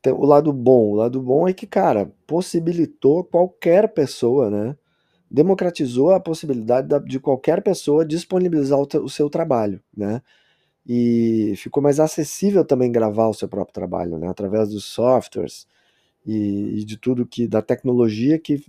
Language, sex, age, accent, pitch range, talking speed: Portuguese, male, 20-39, Brazilian, 120-165 Hz, 145 wpm